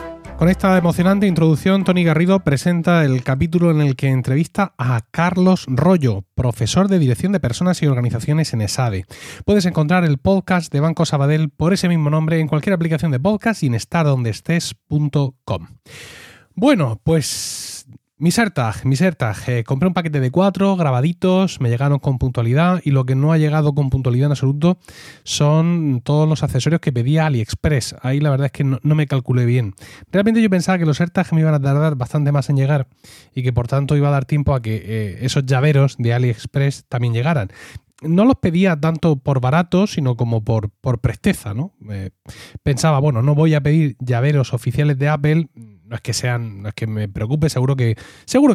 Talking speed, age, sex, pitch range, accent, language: 190 wpm, 30-49, male, 125-175 Hz, Spanish, Spanish